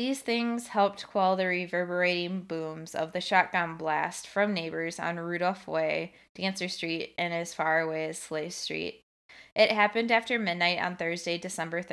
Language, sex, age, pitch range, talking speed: English, female, 20-39, 170-205 Hz, 160 wpm